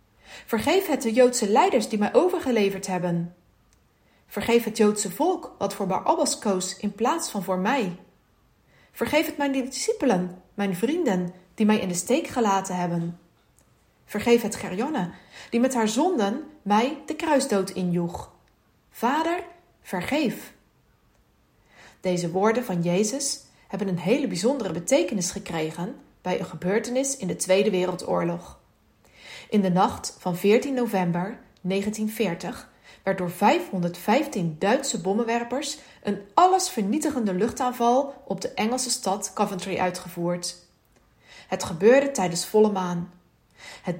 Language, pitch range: English, 185-250 Hz